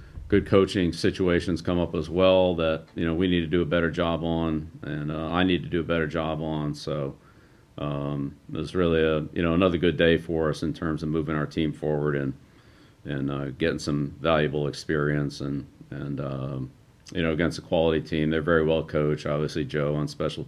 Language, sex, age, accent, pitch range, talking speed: English, male, 40-59, American, 75-85 Hz, 210 wpm